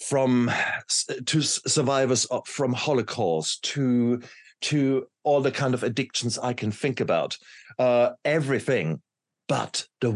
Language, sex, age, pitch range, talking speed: English, male, 50-69, 90-125 Hz, 120 wpm